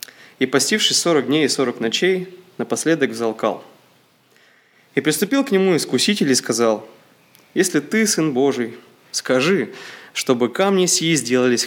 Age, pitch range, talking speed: 20-39, 130-185 Hz, 130 wpm